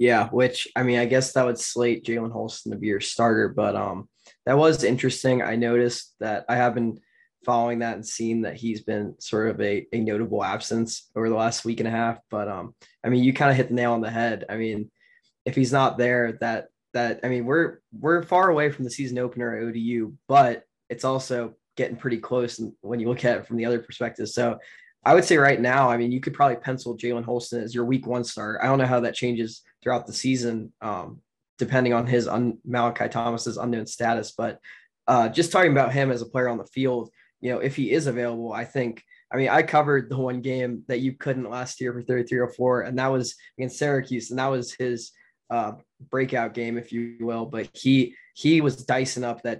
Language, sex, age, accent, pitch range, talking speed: English, male, 20-39, American, 115-130 Hz, 230 wpm